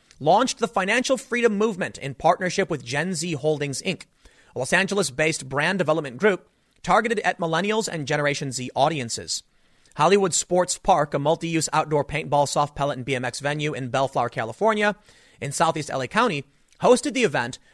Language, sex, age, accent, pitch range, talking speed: English, male, 30-49, American, 145-210 Hz, 160 wpm